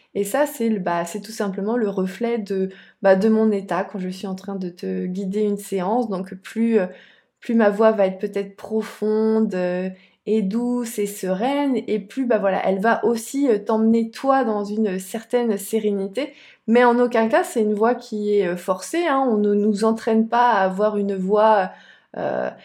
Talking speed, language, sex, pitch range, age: 185 wpm, French, female, 195-240 Hz, 20-39